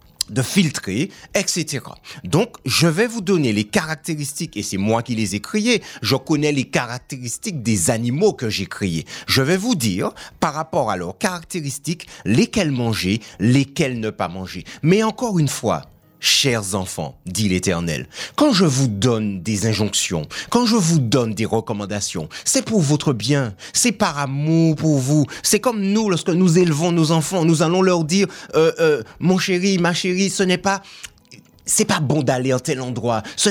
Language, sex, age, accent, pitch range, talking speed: French, male, 30-49, French, 130-205 Hz, 180 wpm